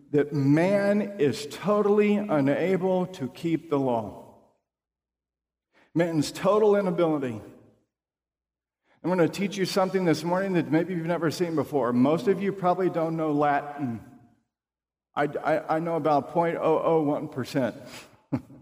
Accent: American